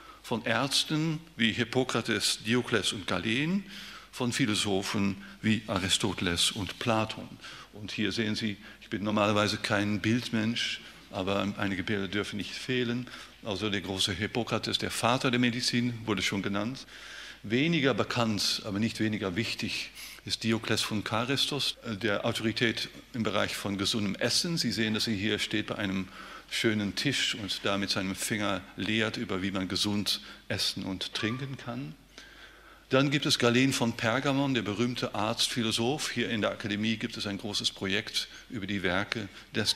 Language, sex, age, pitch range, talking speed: German, male, 50-69, 100-120 Hz, 155 wpm